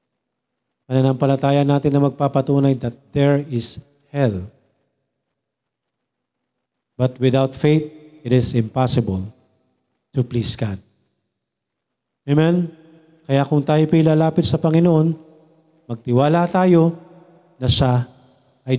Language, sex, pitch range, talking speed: Filipino, male, 125-155 Hz, 95 wpm